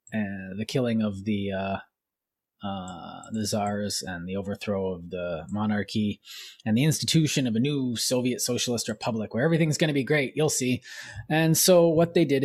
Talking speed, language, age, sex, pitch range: 180 wpm, English, 20-39, male, 105-150 Hz